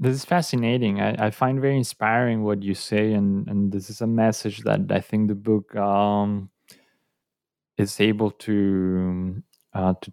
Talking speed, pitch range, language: 165 wpm, 95-105 Hz, English